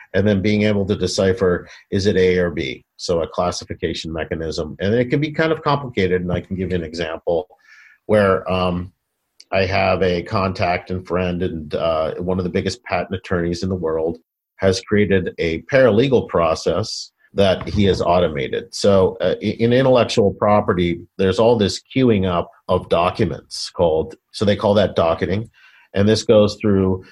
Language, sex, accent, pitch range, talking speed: English, male, American, 90-105 Hz, 175 wpm